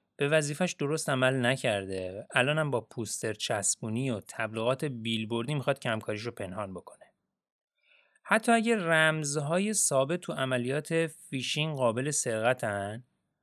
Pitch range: 115-165 Hz